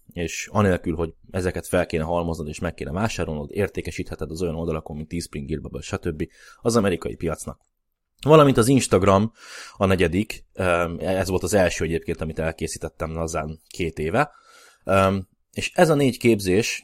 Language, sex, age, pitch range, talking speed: Hungarian, male, 20-39, 85-105 Hz, 150 wpm